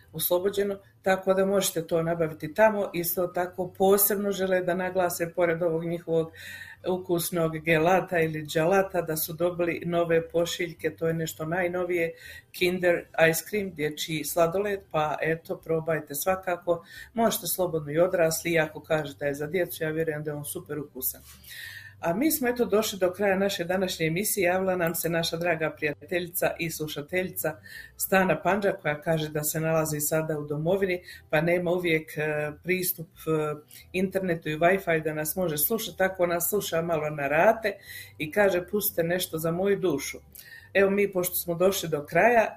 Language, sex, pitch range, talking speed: Croatian, female, 155-185 Hz, 160 wpm